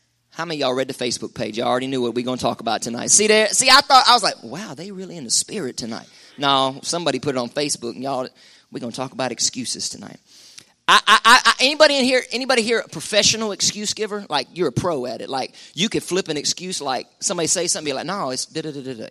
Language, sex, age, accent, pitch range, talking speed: English, male, 30-49, American, 140-190 Hz, 255 wpm